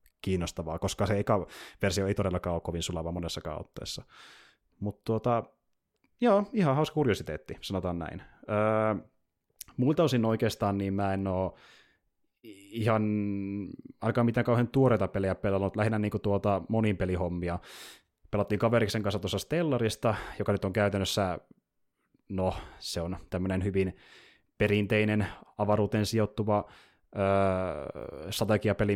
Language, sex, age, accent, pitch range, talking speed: Finnish, male, 20-39, native, 95-105 Hz, 120 wpm